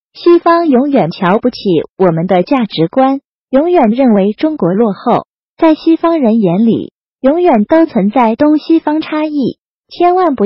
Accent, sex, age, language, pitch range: native, female, 30-49, Chinese, 210-300 Hz